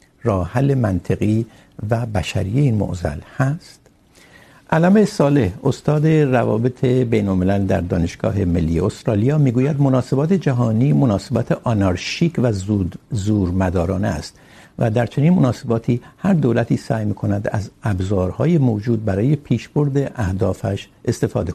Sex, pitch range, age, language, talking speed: male, 95-130 Hz, 60-79, Urdu, 115 wpm